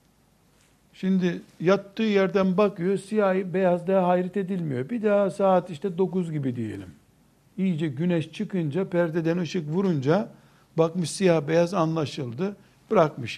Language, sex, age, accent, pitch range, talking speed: Turkish, male, 60-79, native, 145-190 Hz, 115 wpm